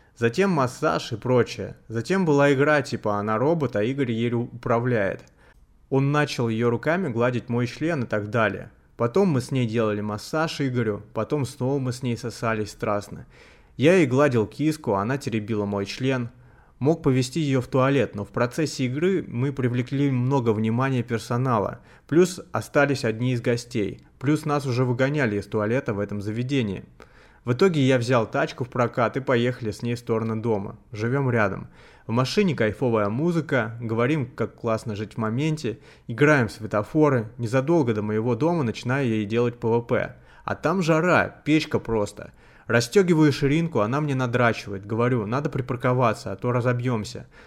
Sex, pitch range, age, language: male, 115-140 Hz, 20-39, Russian